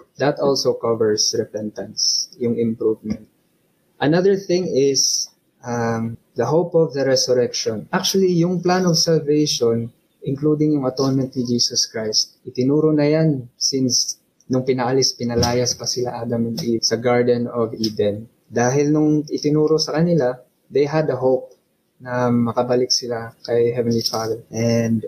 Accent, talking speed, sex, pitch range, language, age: native, 140 wpm, male, 120-155 Hz, Filipino, 20-39